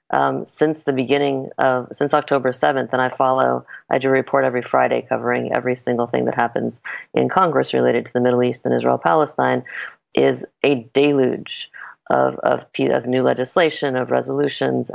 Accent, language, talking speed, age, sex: American, English, 170 wpm, 30-49, female